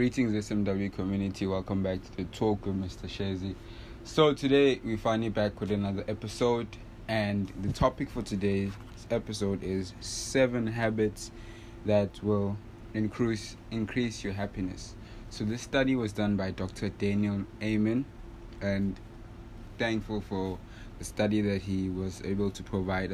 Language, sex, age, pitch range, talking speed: English, male, 20-39, 95-110 Hz, 140 wpm